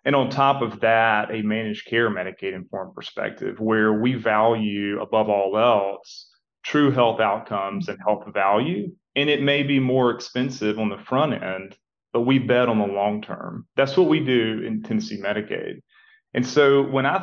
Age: 30-49